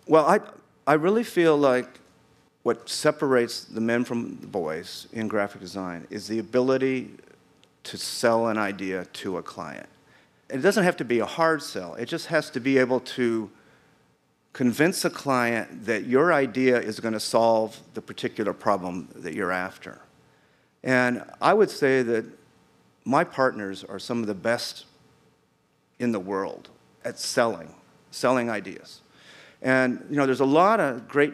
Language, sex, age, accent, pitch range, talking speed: English, male, 50-69, American, 110-140 Hz, 160 wpm